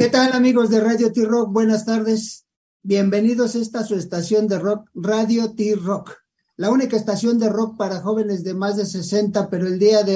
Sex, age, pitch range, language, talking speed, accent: male, 50-69, 180-215 Hz, English, 190 wpm, Mexican